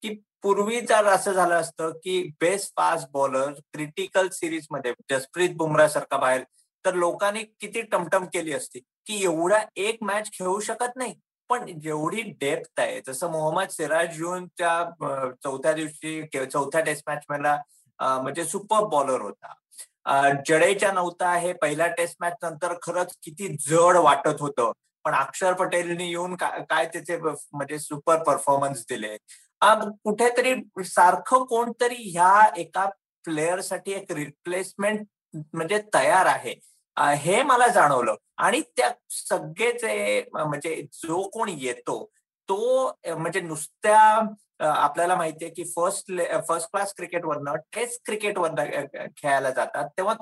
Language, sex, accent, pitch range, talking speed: Marathi, male, native, 155-205 Hz, 130 wpm